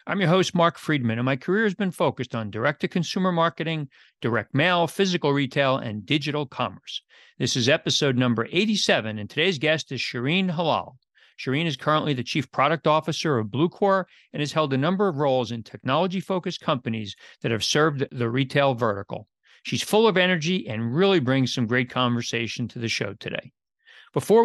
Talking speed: 175 wpm